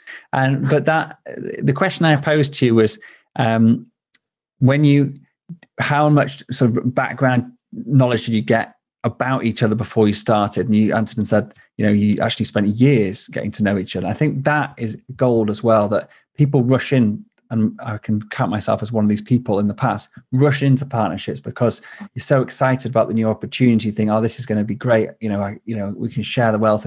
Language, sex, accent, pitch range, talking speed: English, male, British, 105-130 Hz, 210 wpm